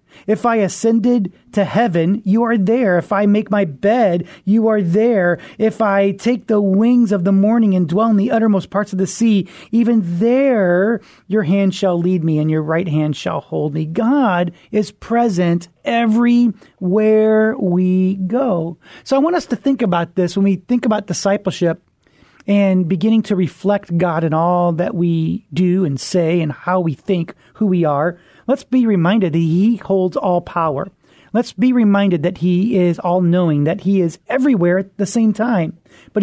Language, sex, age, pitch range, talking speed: English, male, 30-49, 175-220 Hz, 180 wpm